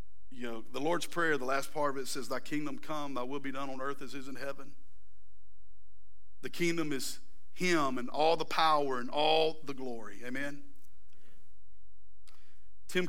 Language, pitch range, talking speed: English, 95-140 Hz, 180 wpm